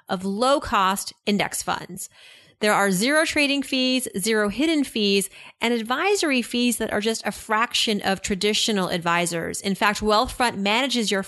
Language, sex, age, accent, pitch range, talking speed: English, female, 30-49, American, 185-235 Hz, 150 wpm